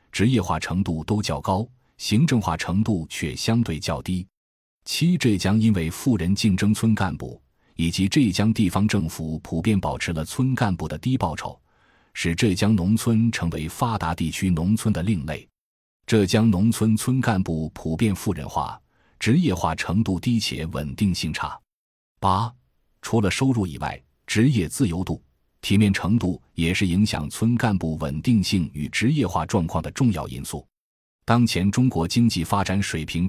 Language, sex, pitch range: Chinese, male, 80-110 Hz